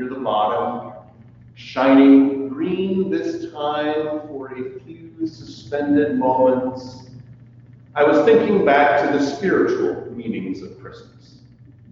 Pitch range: 120-145 Hz